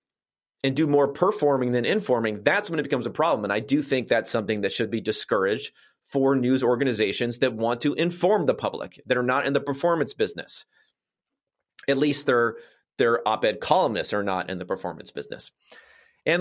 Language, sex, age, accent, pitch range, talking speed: English, male, 30-49, American, 105-140 Hz, 185 wpm